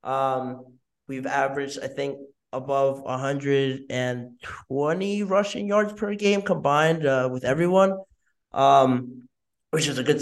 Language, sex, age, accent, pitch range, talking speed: English, male, 20-39, American, 130-145 Hz, 115 wpm